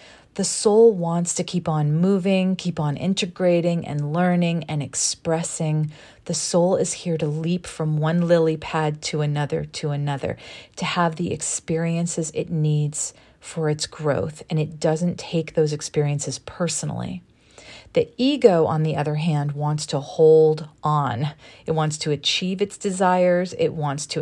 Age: 40-59